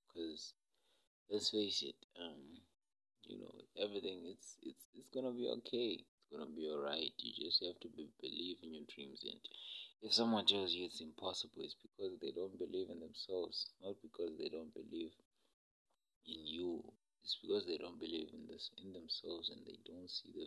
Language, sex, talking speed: English, male, 190 wpm